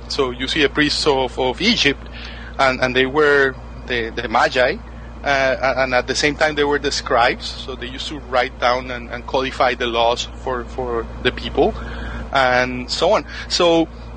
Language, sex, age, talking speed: English, male, 30-49, 185 wpm